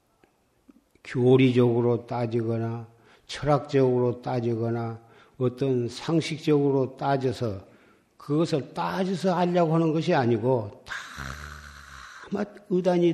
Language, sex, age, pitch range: Korean, male, 50-69, 115-165 Hz